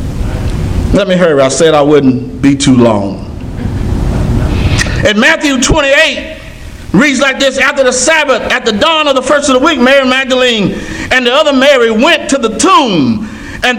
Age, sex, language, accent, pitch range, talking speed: 50-69, male, English, American, 230-300 Hz, 170 wpm